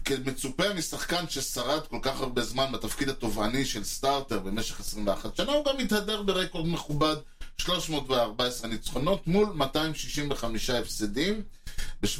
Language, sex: Hebrew, male